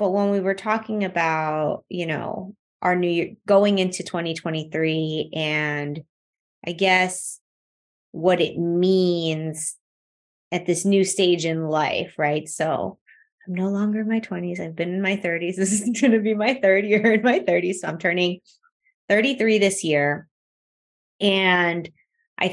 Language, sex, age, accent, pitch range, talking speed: English, female, 20-39, American, 160-210 Hz, 155 wpm